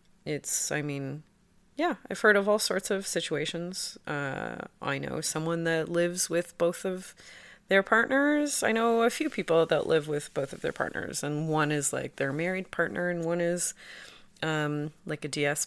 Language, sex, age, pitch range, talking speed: English, female, 30-49, 155-225 Hz, 185 wpm